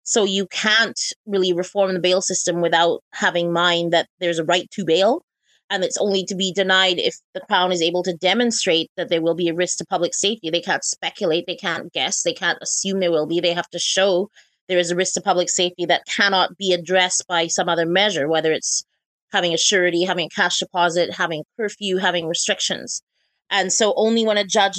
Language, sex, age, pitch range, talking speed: English, female, 30-49, 175-205 Hz, 220 wpm